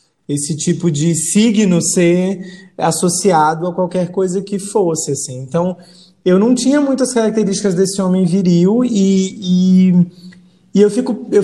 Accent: Brazilian